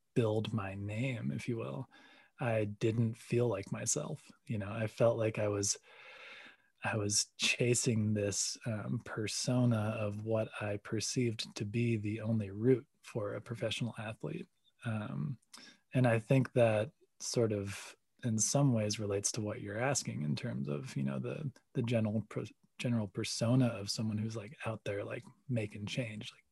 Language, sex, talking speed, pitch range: English, male, 165 wpm, 105-125 Hz